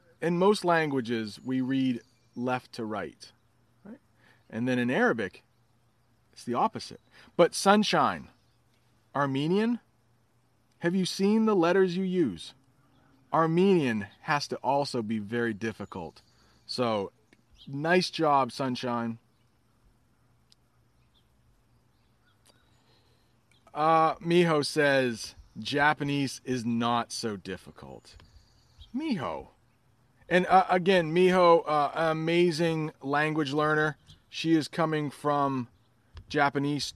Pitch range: 120-160 Hz